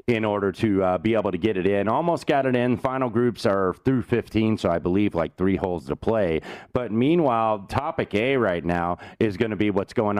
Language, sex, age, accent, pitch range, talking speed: English, male, 30-49, American, 90-125 Hz, 230 wpm